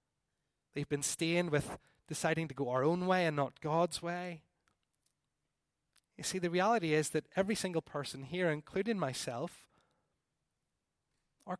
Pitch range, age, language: 145-185 Hz, 30-49, English